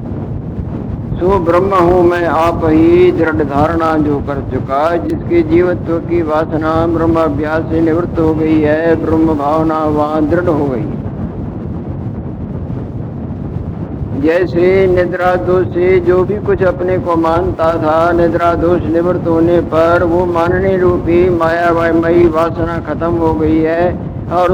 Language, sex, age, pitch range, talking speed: Hindi, male, 60-79, 155-175 Hz, 135 wpm